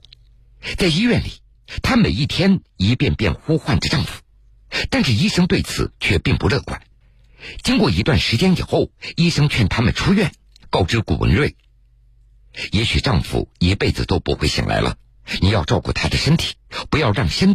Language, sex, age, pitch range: Chinese, male, 50-69, 100-150 Hz